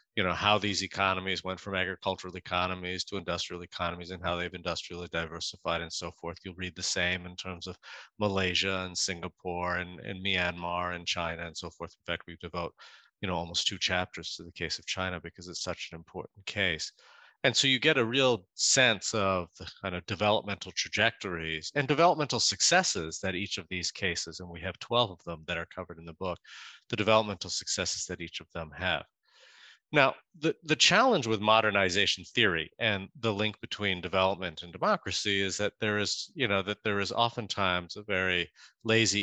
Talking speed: 195 wpm